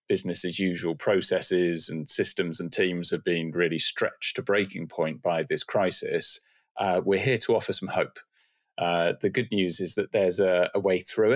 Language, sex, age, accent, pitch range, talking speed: English, male, 30-49, British, 85-100 Hz, 190 wpm